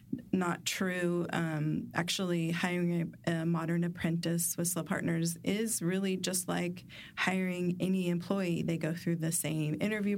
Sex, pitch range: female, 165-190 Hz